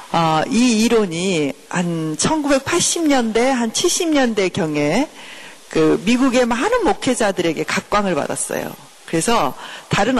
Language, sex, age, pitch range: Korean, female, 40-59, 175-250 Hz